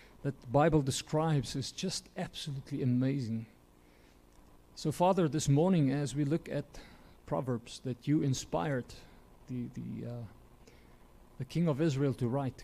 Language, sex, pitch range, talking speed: English, male, 115-145 Hz, 140 wpm